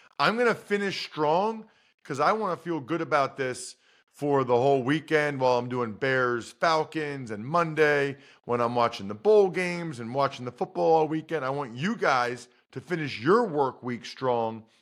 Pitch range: 130-185 Hz